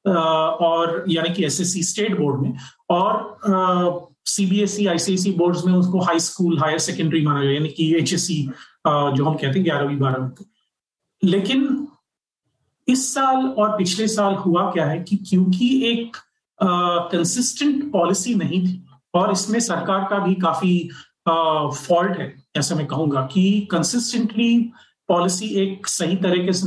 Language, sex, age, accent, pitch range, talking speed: Hindi, male, 30-49, native, 165-200 Hz, 140 wpm